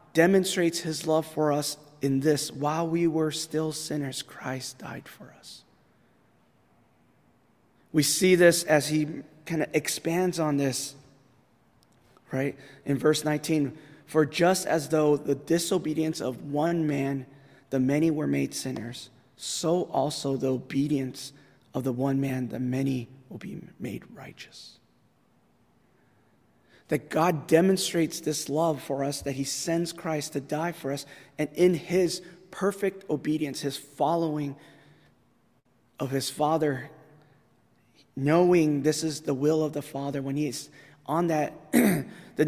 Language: English